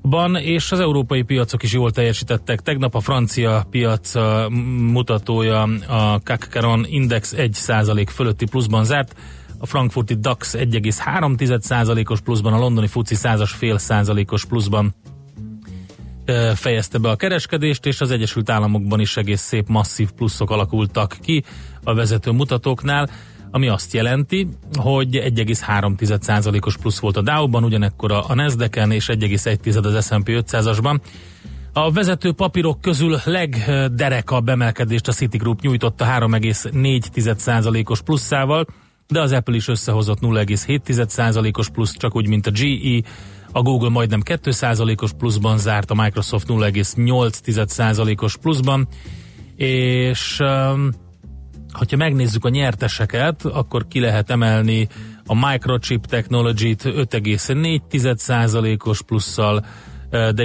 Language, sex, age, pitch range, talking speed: Hungarian, male, 30-49, 110-125 Hz, 115 wpm